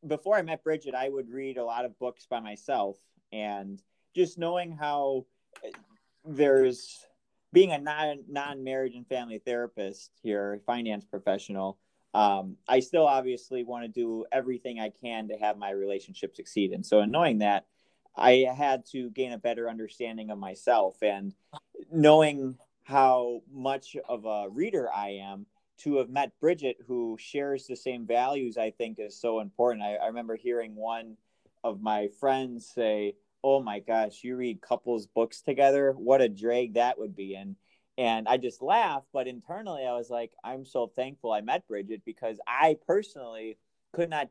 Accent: American